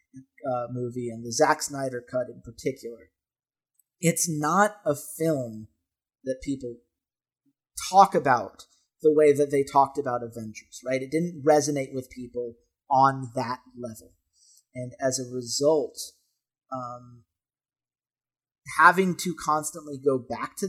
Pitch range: 130-155 Hz